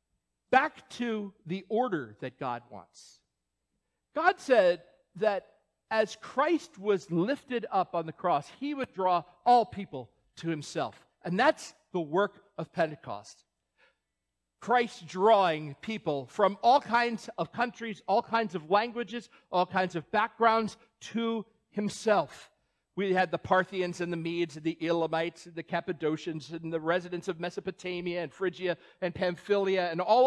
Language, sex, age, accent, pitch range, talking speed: English, male, 50-69, American, 170-240 Hz, 145 wpm